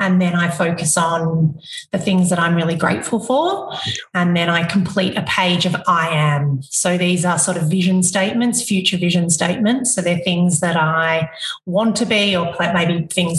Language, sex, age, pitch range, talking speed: English, female, 30-49, 170-215 Hz, 190 wpm